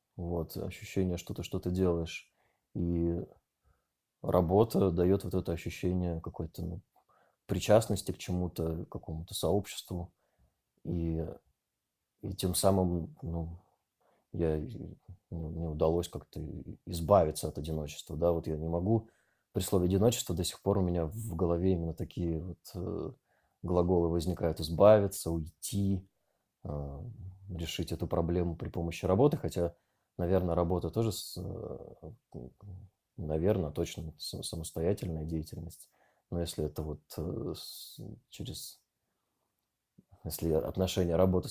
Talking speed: 115 wpm